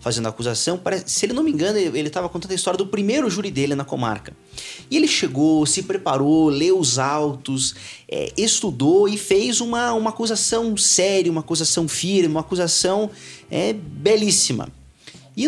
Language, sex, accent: Portuguese, male, Brazilian